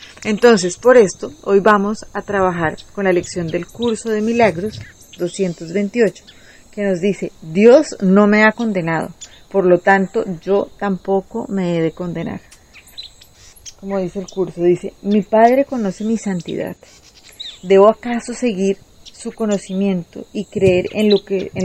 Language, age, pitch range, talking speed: Spanish, 30-49, 180-215 Hz, 140 wpm